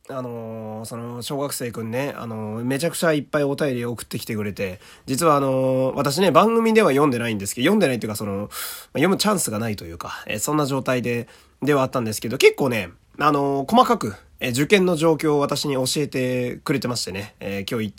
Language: Japanese